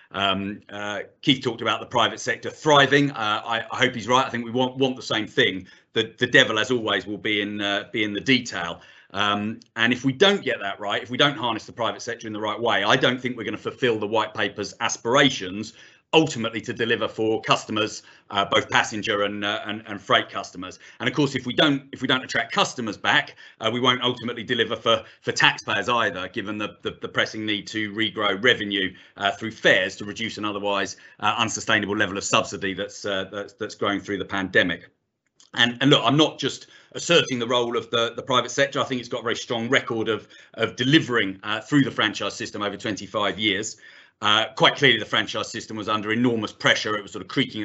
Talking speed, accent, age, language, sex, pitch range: 225 wpm, British, 40-59, English, male, 105-125 Hz